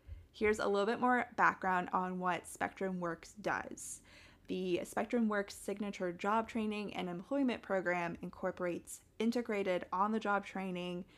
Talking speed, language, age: 130 wpm, English, 20-39